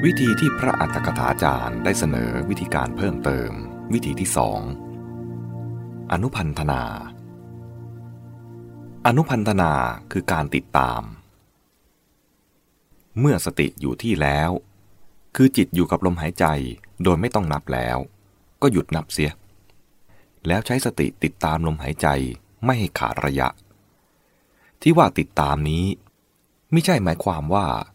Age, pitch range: 20-39, 75-100 Hz